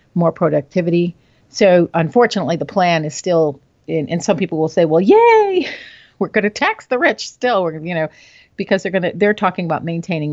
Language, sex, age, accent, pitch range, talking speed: English, female, 50-69, American, 155-190 Hz, 200 wpm